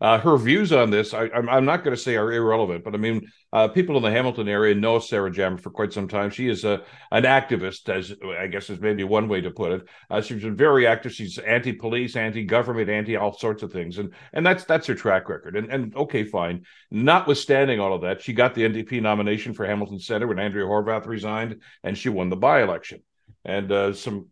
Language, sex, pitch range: English, male, 100-125 Hz